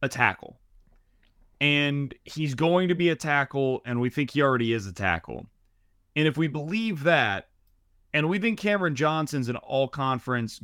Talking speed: 170 wpm